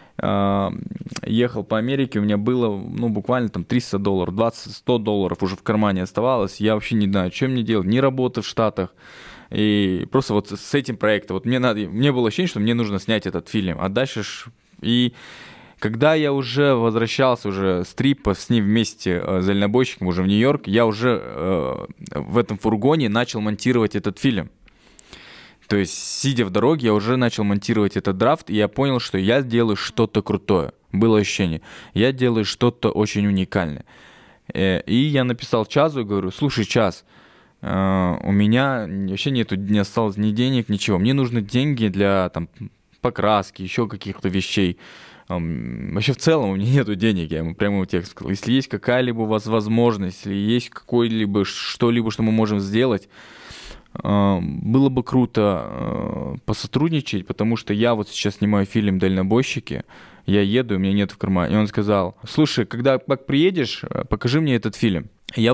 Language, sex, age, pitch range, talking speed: Russian, male, 20-39, 100-120 Hz, 170 wpm